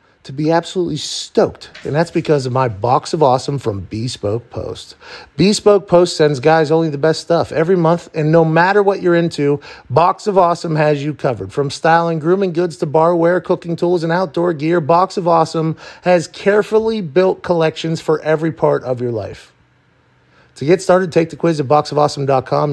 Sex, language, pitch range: male, English, 140-180 Hz